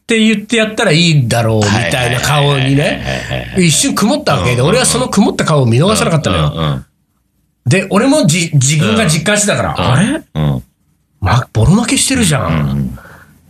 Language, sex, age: Japanese, male, 40-59